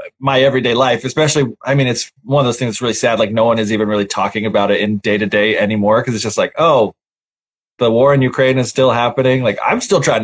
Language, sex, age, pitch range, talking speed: English, male, 20-39, 125-150 Hz, 250 wpm